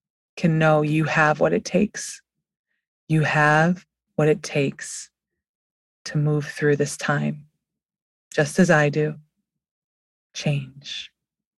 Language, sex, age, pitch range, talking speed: English, female, 30-49, 155-180 Hz, 115 wpm